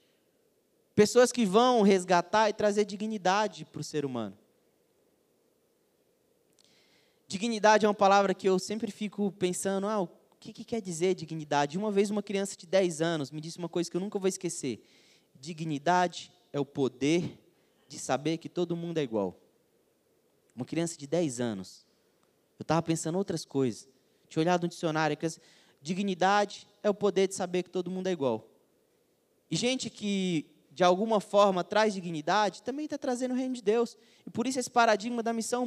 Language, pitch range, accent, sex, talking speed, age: Portuguese, 160-215 Hz, Brazilian, male, 175 wpm, 20-39